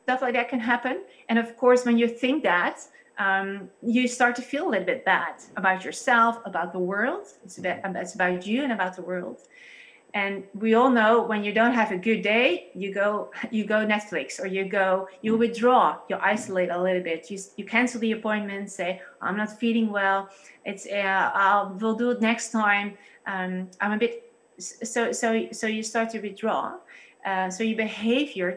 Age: 30-49